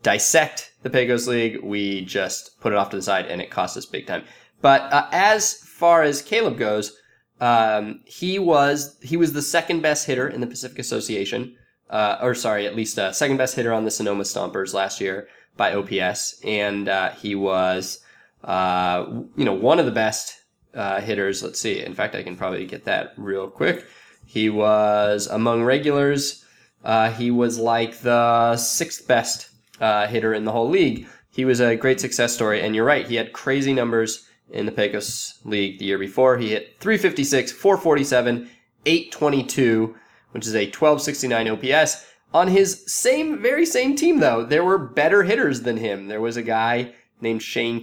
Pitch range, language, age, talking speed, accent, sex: 110-145 Hz, English, 20-39, 180 wpm, American, male